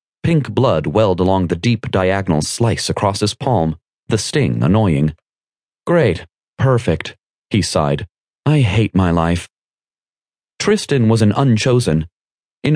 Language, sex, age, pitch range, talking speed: English, male, 30-49, 90-125 Hz, 125 wpm